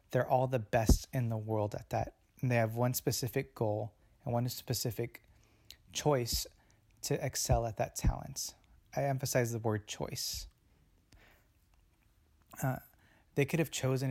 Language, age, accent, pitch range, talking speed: English, 20-39, American, 105-130 Hz, 145 wpm